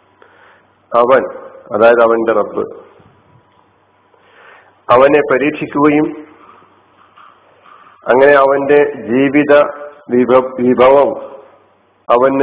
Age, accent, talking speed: 50-69, native, 55 wpm